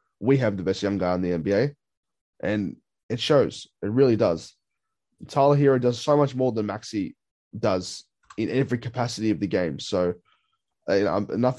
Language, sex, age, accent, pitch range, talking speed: English, male, 20-39, Australian, 105-130 Hz, 170 wpm